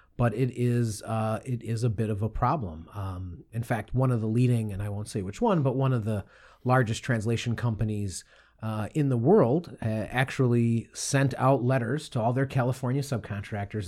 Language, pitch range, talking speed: English, 110-135 Hz, 195 wpm